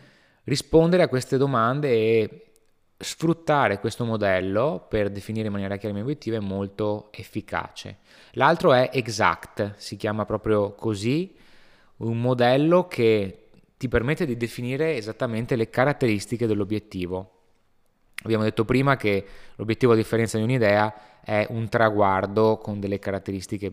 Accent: native